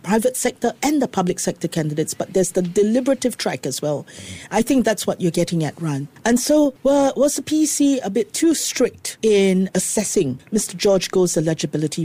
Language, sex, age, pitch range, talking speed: English, female, 40-59, 165-225 Hz, 190 wpm